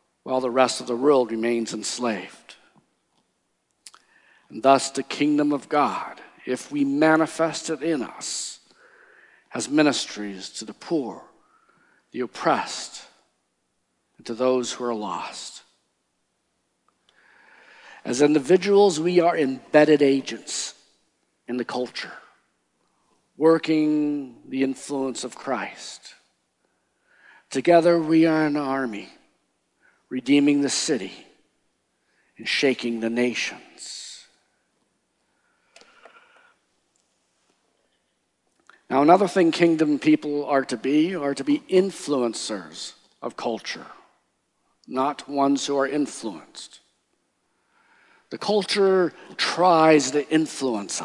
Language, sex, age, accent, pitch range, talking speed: English, male, 50-69, American, 130-180 Hz, 100 wpm